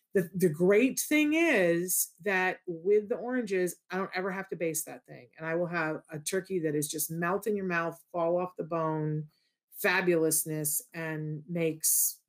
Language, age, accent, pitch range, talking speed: English, 40-59, American, 165-190 Hz, 175 wpm